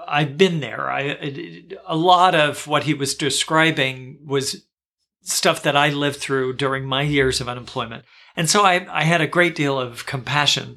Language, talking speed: English, 180 wpm